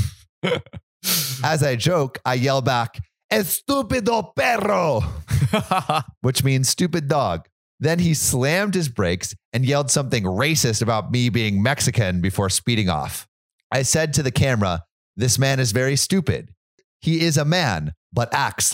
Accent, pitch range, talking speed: American, 105-150 Hz, 140 wpm